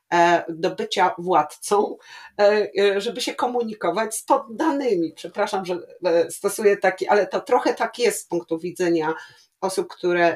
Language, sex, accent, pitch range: Polish, female, native, 180-240 Hz